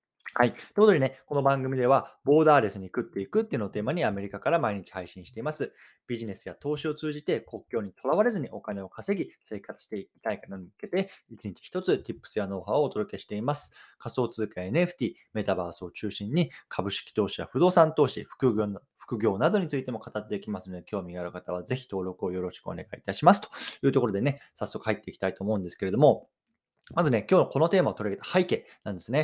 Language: Japanese